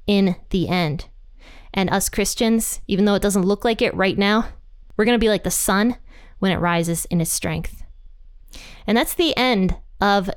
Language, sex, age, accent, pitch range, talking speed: English, female, 20-39, American, 175-210 Hz, 190 wpm